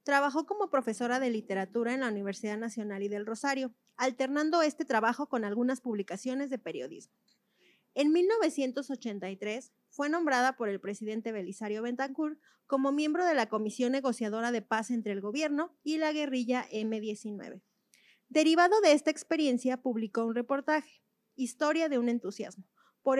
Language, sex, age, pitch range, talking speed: Spanish, female, 30-49, 220-290 Hz, 145 wpm